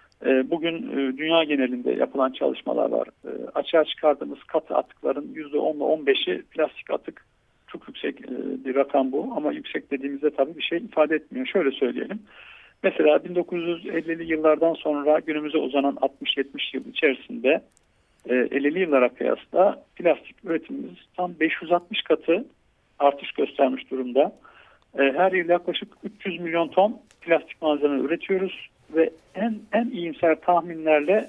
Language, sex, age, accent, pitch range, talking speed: Turkish, male, 50-69, native, 145-185 Hz, 120 wpm